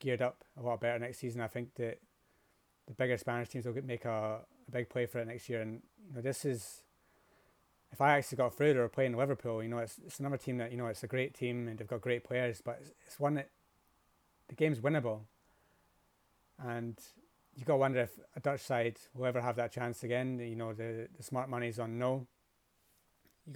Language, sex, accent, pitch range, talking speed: English, male, British, 115-130 Hz, 220 wpm